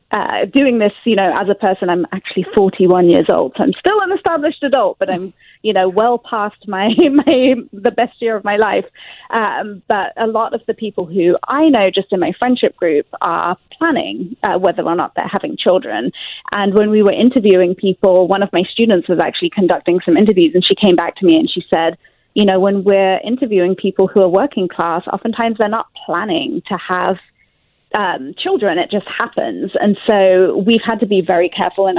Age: 30-49